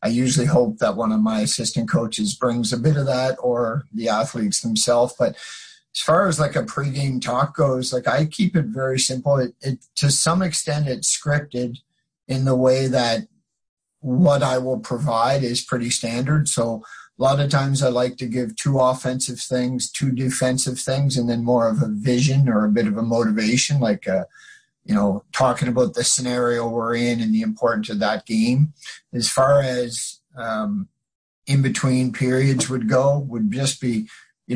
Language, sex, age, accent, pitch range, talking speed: English, male, 50-69, American, 120-145 Hz, 185 wpm